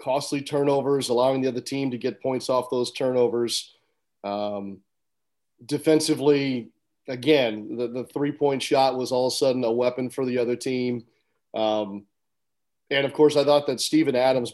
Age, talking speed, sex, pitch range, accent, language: 40-59, 160 wpm, male, 120-145 Hz, American, English